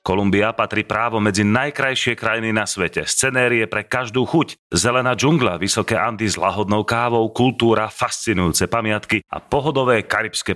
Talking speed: 140 wpm